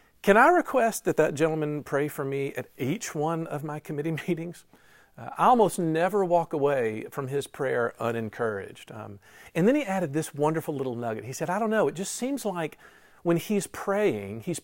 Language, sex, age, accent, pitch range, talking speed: English, male, 50-69, American, 140-195 Hz, 195 wpm